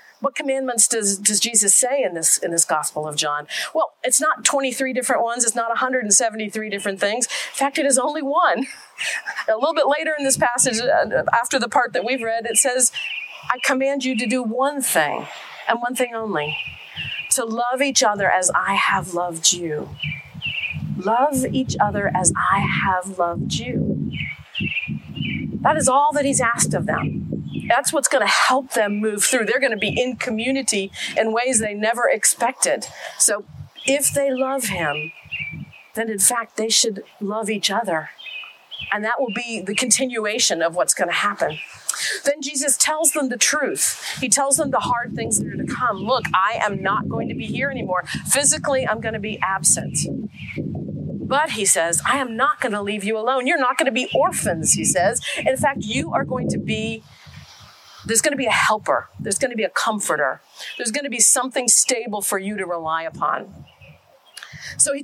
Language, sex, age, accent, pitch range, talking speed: English, female, 40-59, American, 205-270 Hz, 190 wpm